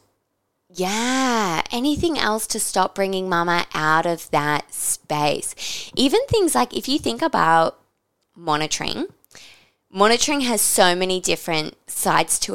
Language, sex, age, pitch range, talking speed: English, female, 20-39, 155-190 Hz, 125 wpm